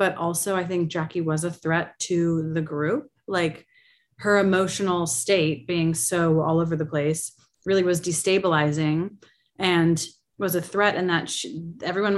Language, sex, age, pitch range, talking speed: English, female, 30-49, 160-195 Hz, 155 wpm